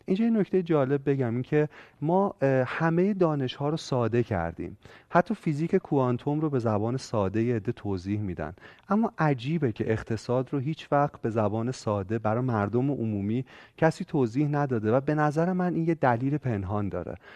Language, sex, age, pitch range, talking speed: Persian, male, 30-49, 110-155 Hz, 165 wpm